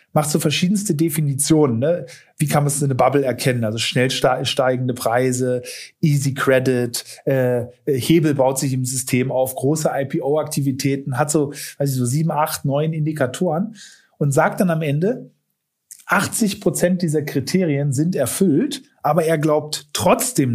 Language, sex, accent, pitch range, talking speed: German, male, German, 140-175 Hz, 150 wpm